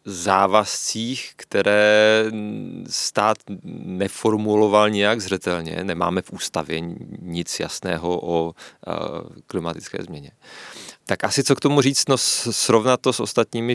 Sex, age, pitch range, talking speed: male, 30-49, 90-120 Hz, 110 wpm